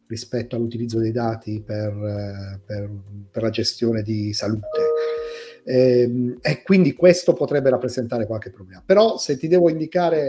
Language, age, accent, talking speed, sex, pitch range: Italian, 40-59, native, 140 wpm, male, 110-130 Hz